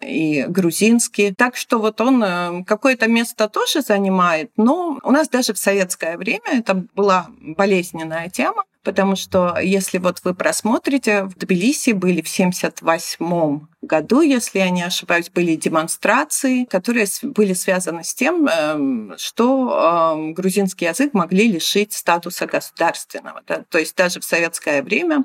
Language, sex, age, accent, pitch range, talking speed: Russian, female, 40-59, native, 170-235 Hz, 140 wpm